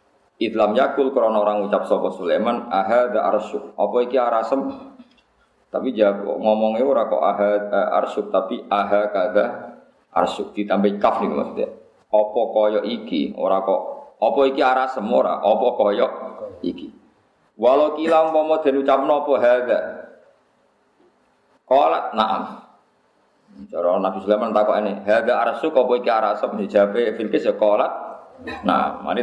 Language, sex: Indonesian, male